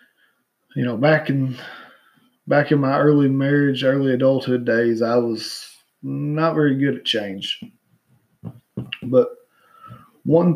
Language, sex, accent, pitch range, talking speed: English, male, American, 115-145 Hz, 120 wpm